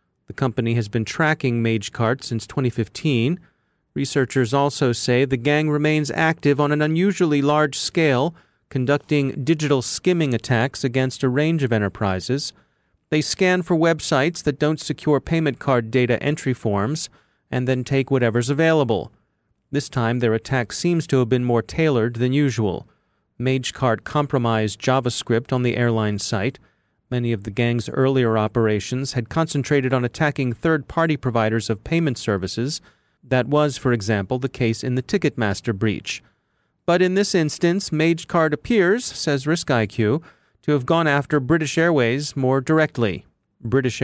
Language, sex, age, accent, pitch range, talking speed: English, male, 40-59, American, 115-150 Hz, 145 wpm